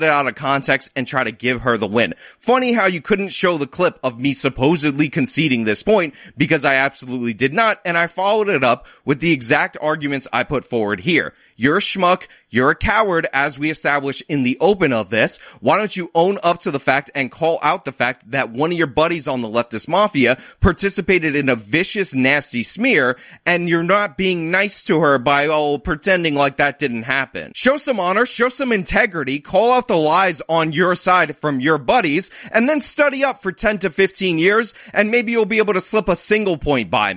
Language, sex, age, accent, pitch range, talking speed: English, male, 30-49, American, 135-195 Hz, 215 wpm